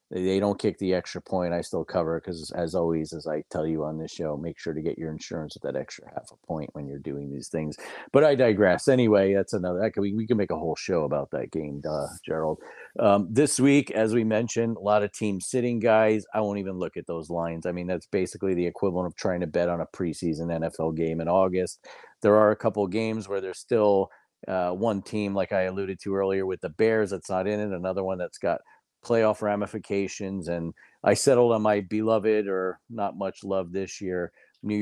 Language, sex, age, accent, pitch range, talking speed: English, male, 40-59, American, 90-105 Hz, 225 wpm